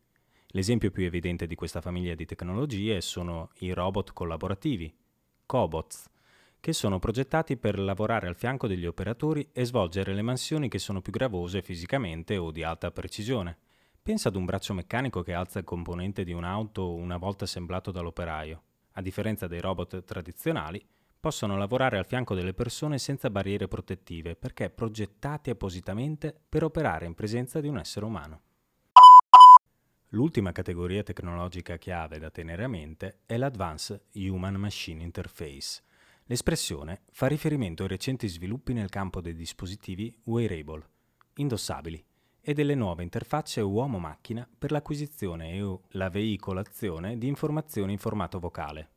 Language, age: Italian, 30-49